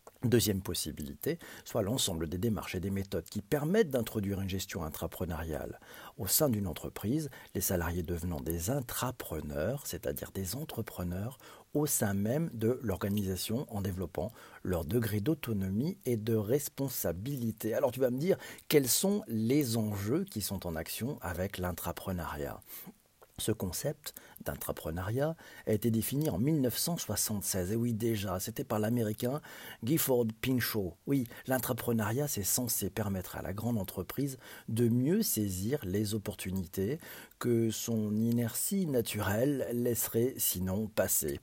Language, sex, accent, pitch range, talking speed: French, male, French, 100-135 Hz, 135 wpm